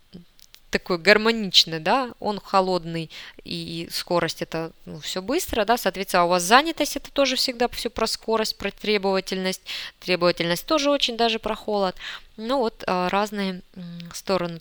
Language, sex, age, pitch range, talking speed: Russian, female, 20-39, 180-225 Hz, 140 wpm